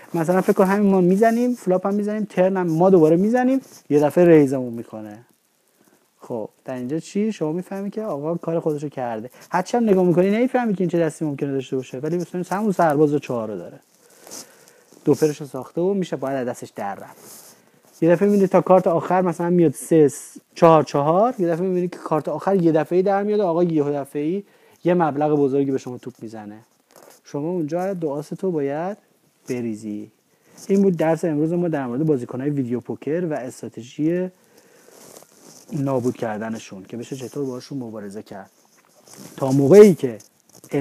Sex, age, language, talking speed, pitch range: male, 30-49, Persian, 170 wpm, 135-185 Hz